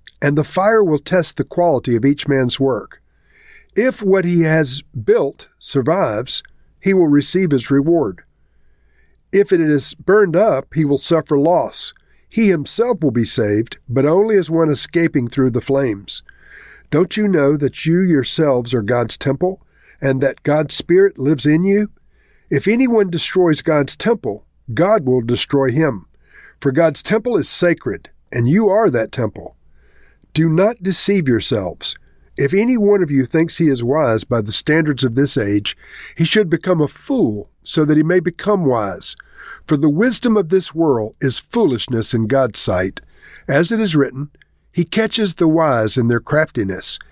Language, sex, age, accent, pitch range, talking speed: English, male, 50-69, American, 130-185 Hz, 165 wpm